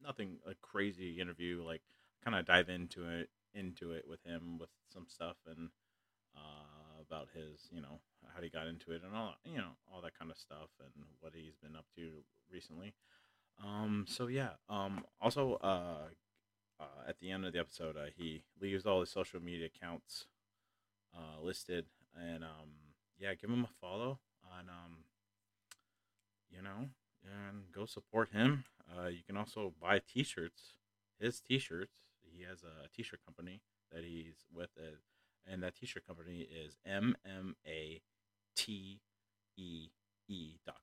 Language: English